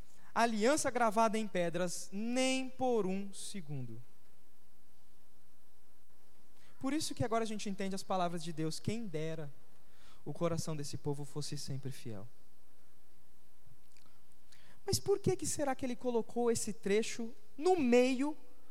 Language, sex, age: Portuguese, male, 20-39